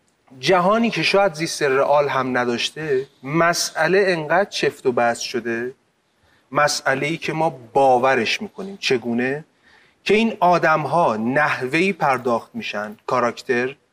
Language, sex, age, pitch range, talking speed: Persian, male, 30-49, 125-180 Hz, 110 wpm